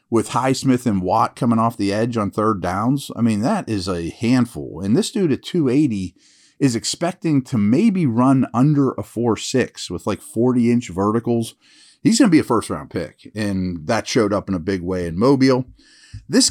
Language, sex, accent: English, male, American